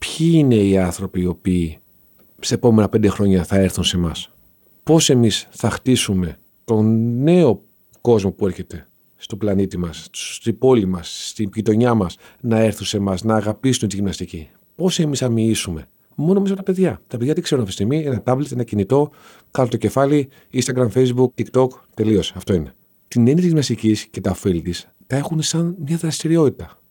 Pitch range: 95-140 Hz